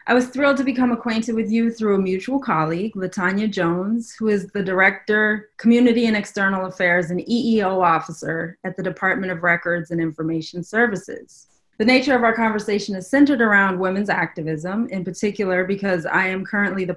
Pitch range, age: 180-215 Hz, 30-49